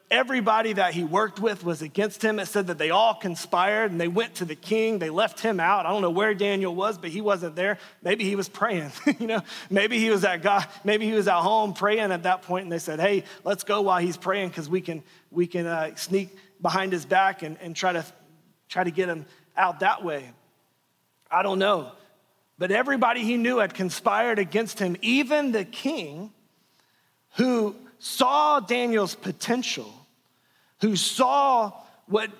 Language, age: English, 30-49